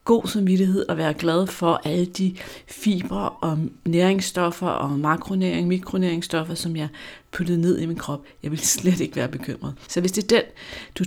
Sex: female